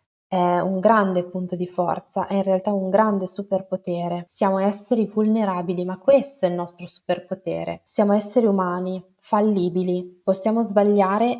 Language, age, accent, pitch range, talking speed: Italian, 20-39, native, 180-215 Hz, 140 wpm